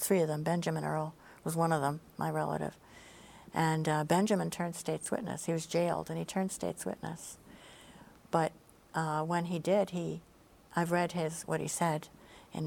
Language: English